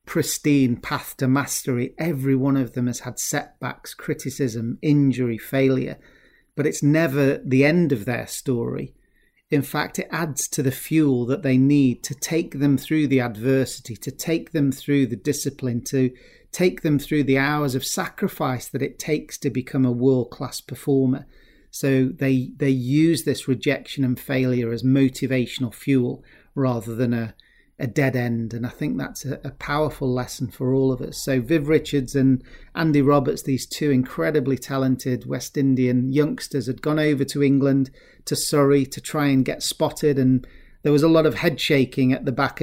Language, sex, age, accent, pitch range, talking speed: English, male, 40-59, British, 130-150 Hz, 175 wpm